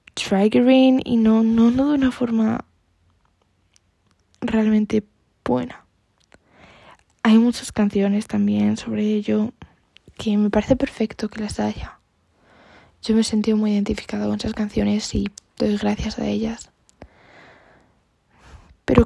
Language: Spanish